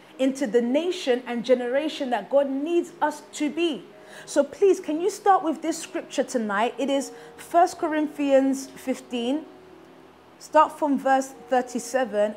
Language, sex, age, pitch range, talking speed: English, female, 20-39, 240-310 Hz, 140 wpm